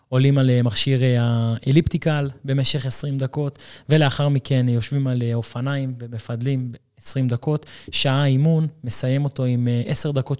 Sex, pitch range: male, 120-140 Hz